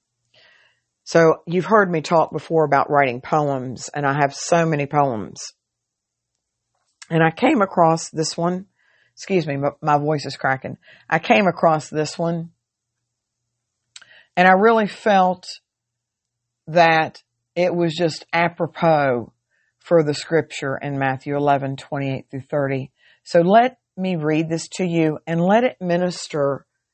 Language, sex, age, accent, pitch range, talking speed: English, female, 50-69, American, 120-165 Hz, 140 wpm